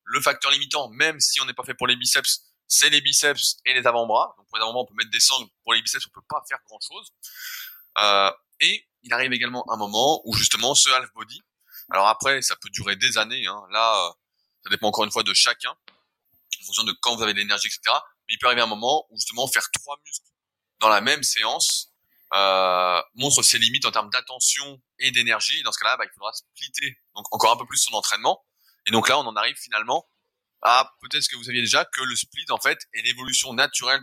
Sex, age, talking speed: male, 20-39, 235 wpm